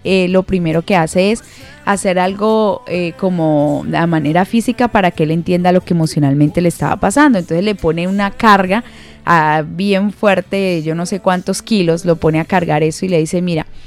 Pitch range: 160-195 Hz